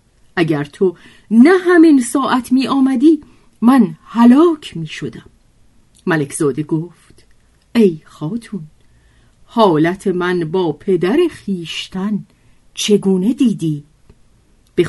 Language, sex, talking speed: Persian, female, 95 wpm